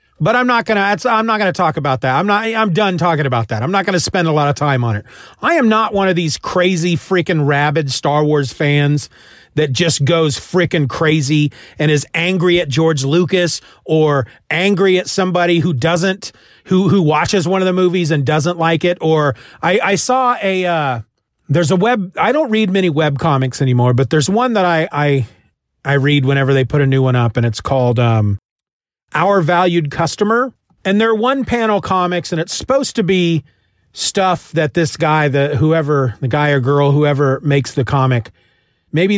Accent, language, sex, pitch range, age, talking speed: American, English, male, 145-185 Hz, 40-59, 200 wpm